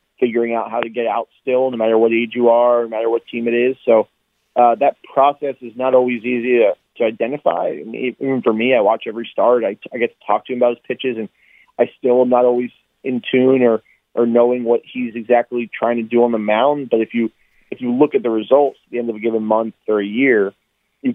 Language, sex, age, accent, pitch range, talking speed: English, male, 30-49, American, 110-125 Hz, 255 wpm